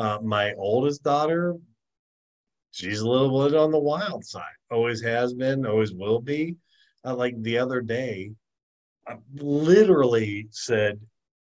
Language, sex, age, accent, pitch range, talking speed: English, male, 40-59, American, 100-130 Hz, 135 wpm